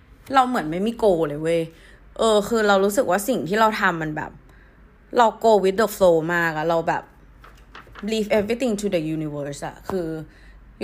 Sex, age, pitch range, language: female, 20-39, 165-220 Hz, Thai